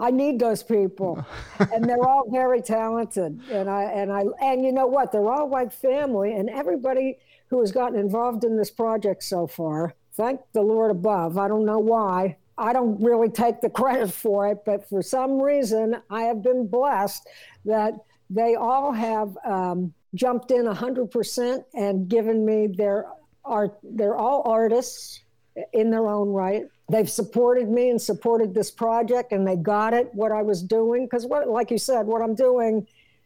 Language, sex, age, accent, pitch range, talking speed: English, female, 60-79, American, 200-245 Hz, 175 wpm